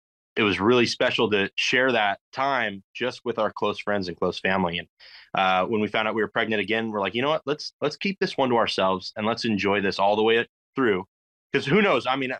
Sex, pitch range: male, 110-130 Hz